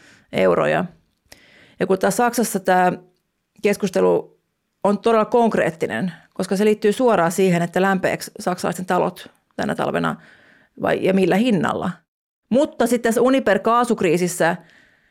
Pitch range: 185-220 Hz